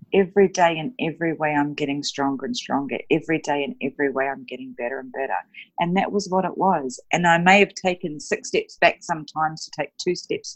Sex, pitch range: female, 145-185 Hz